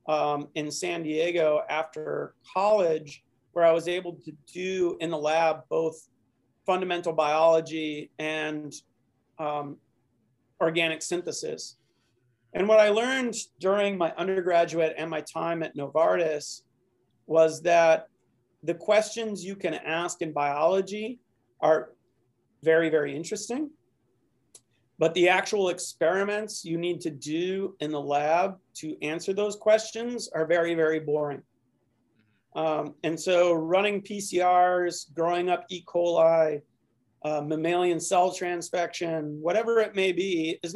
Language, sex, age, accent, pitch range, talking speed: English, male, 40-59, American, 150-180 Hz, 125 wpm